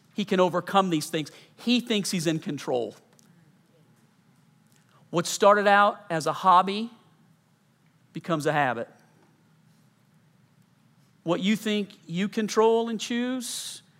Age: 50-69